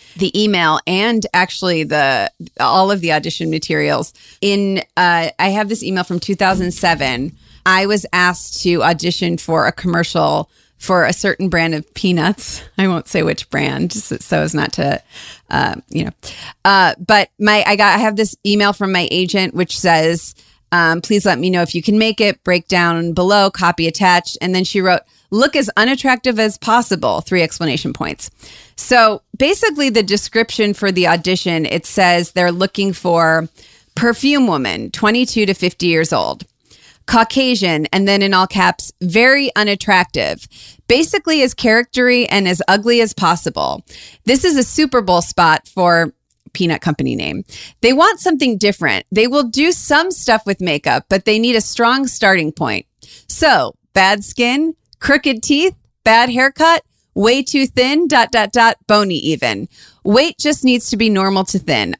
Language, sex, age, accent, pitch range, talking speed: English, female, 30-49, American, 175-230 Hz, 165 wpm